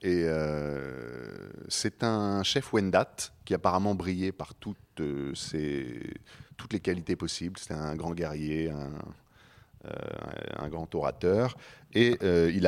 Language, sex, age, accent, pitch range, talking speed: French, male, 30-49, French, 80-105 Hz, 135 wpm